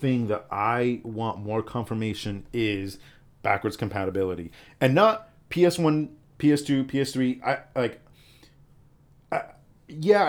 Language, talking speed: English, 120 wpm